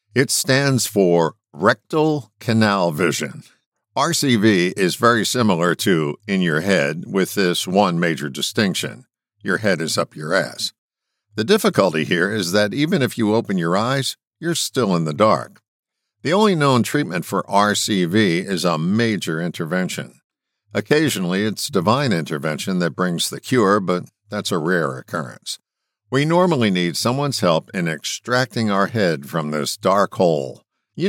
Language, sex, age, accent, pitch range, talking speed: English, male, 60-79, American, 85-125 Hz, 150 wpm